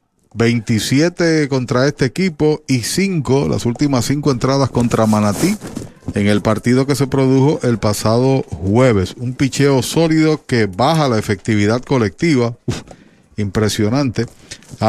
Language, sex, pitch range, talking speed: Spanish, male, 110-140 Hz, 125 wpm